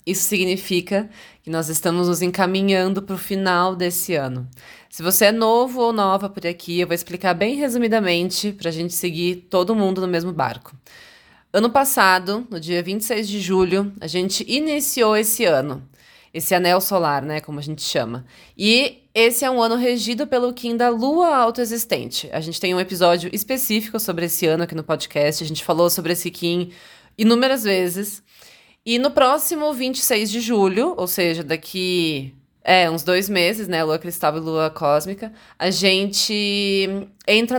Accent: Brazilian